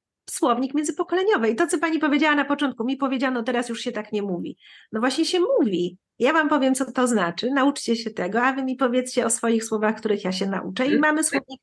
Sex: female